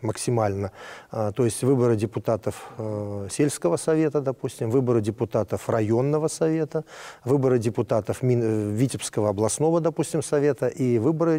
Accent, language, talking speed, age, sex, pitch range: native, Russian, 105 wpm, 40-59, male, 110-140 Hz